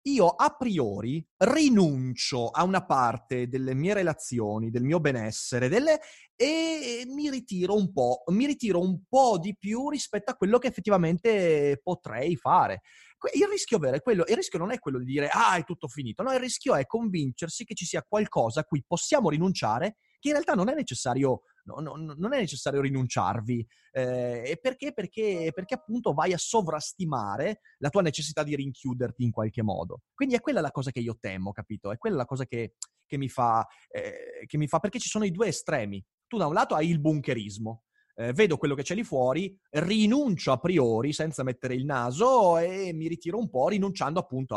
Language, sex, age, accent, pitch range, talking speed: Italian, male, 30-49, native, 130-210 Hz, 195 wpm